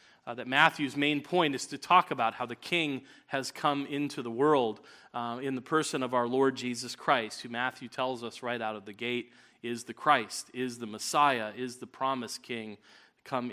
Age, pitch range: 30-49, 120-145 Hz